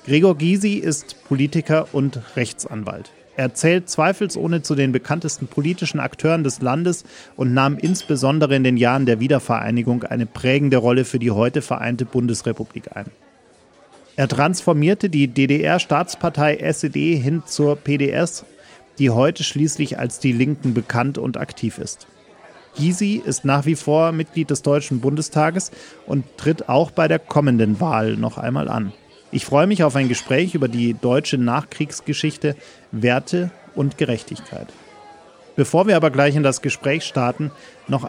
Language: German